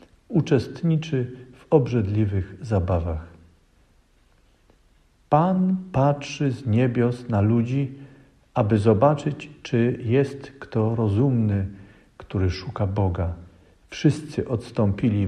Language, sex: Polish, male